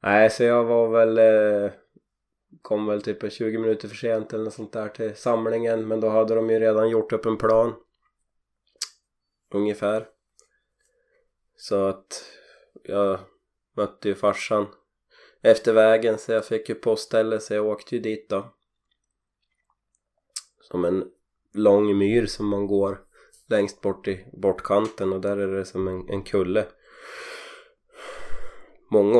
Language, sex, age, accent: Swedish, male, 20-39, native